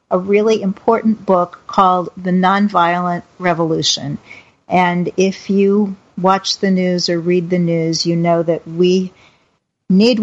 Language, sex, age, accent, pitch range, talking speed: English, female, 50-69, American, 180-215 Hz, 135 wpm